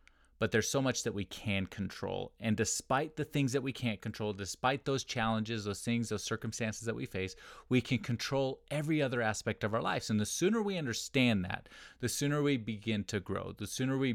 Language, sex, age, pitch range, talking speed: English, male, 30-49, 100-130 Hz, 210 wpm